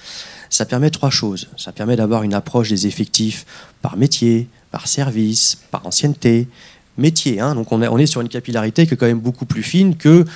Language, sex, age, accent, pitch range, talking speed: French, male, 40-59, French, 110-155 Hz, 190 wpm